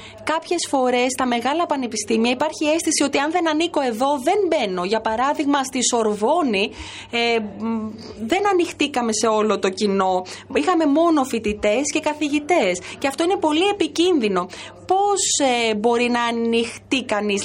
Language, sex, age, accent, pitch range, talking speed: French, female, 20-39, Greek, 215-295 Hz, 140 wpm